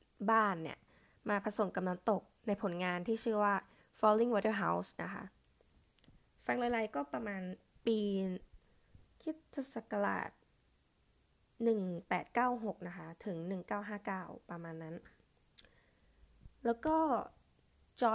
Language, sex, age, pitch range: Thai, female, 20-39, 185-235 Hz